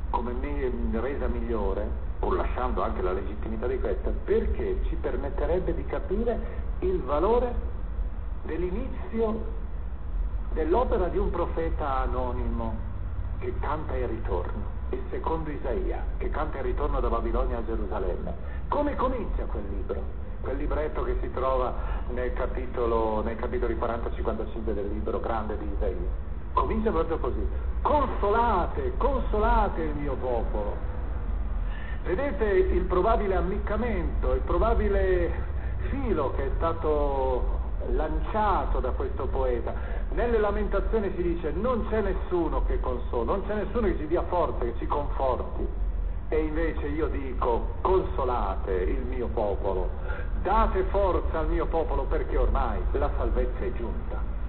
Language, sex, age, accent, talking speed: Italian, male, 50-69, native, 130 wpm